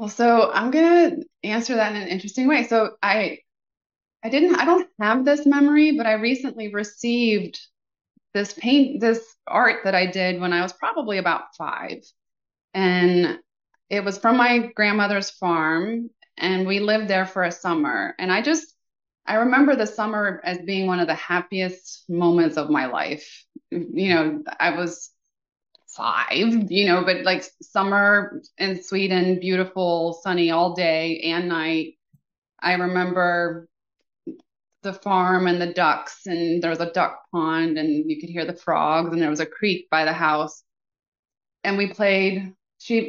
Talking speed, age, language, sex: 165 wpm, 20-39, English, female